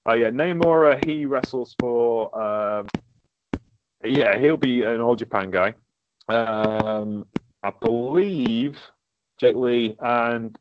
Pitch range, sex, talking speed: 110-145 Hz, male, 120 wpm